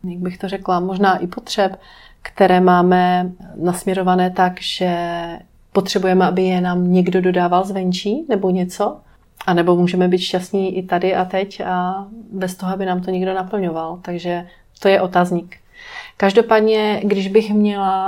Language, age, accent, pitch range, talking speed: Czech, 30-49, native, 180-195 Hz, 155 wpm